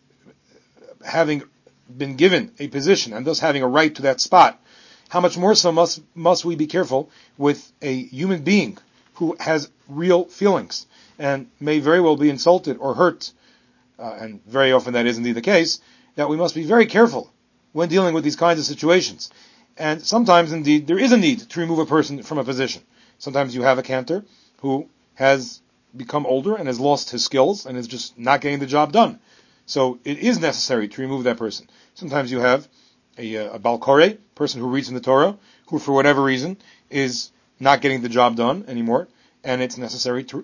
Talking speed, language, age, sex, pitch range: 195 wpm, English, 40-59, male, 130-175 Hz